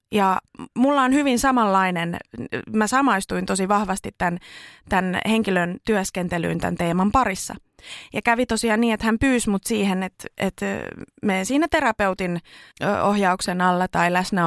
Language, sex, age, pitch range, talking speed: Finnish, female, 20-39, 185-240 Hz, 140 wpm